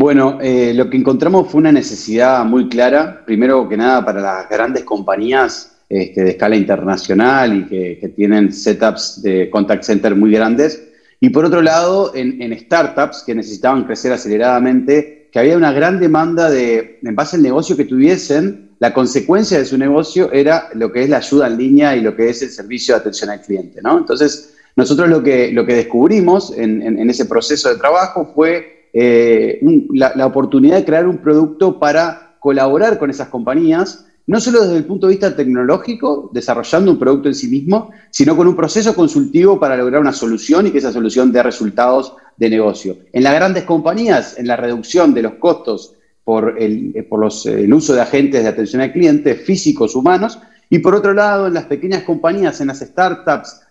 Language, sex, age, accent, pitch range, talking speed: Spanish, male, 30-49, Argentinian, 115-175 Hz, 190 wpm